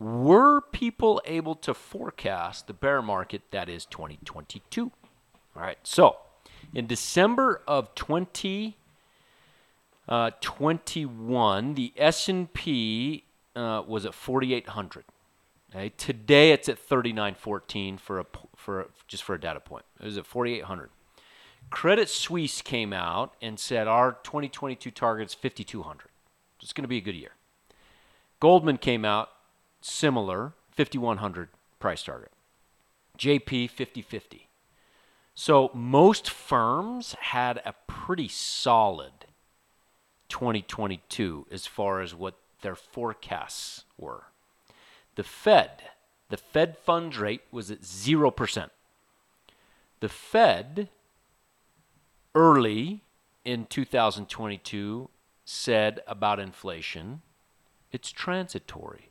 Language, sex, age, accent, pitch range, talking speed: English, male, 40-59, American, 105-155 Hz, 110 wpm